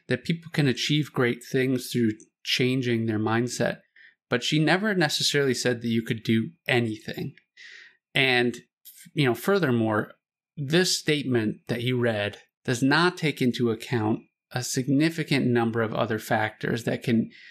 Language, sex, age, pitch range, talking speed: English, male, 30-49, 115-145 Hz, 145 wpm